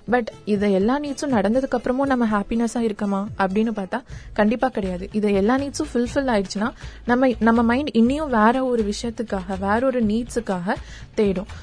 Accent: native